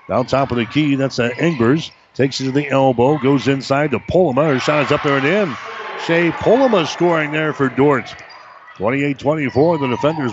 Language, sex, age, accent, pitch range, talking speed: English, male, 50-69, American, 125-145 Hz, 200 wpm